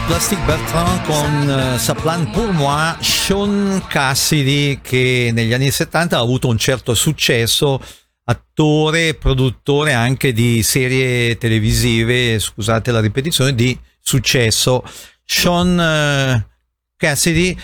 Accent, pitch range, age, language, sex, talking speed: native, 125-155 Hz, 50-69, Italian, male, 110 wpm